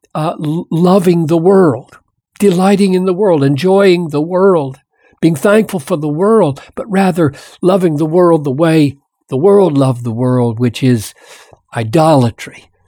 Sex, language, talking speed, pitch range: male, English, 145 wpm, 135-190 Hz